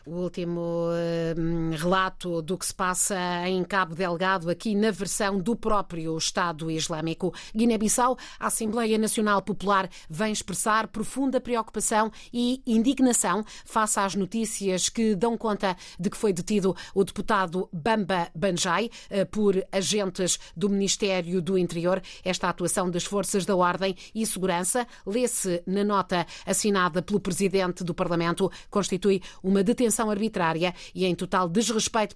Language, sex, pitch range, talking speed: Portuguese, female, 180-215 Hz, 135 wpm